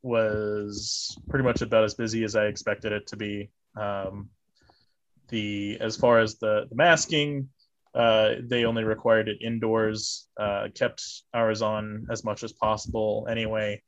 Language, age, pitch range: English, 20-39, 105-115 Hz